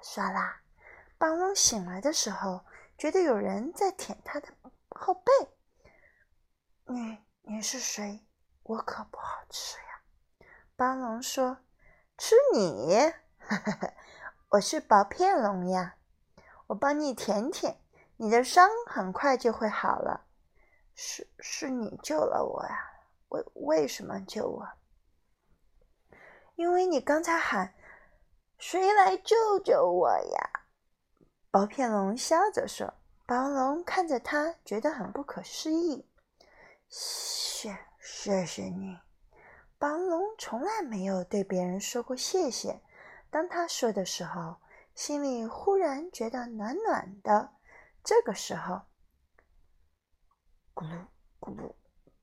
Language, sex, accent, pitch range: Chinese, female, native, 215-360 Hz